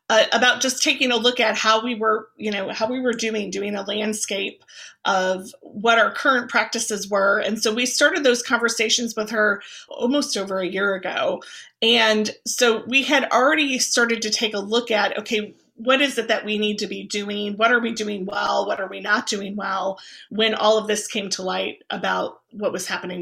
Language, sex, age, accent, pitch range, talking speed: English, female, 30-49, American, 205-235 Hz, 205 wpm